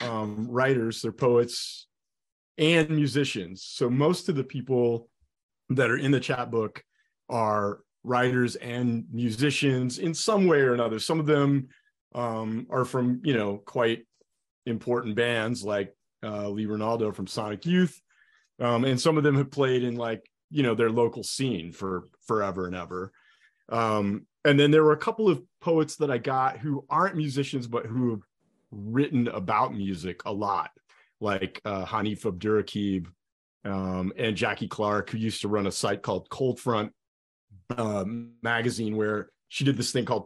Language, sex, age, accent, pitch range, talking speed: English, male, 30-49, American, 105-135 Hz, 165 wpm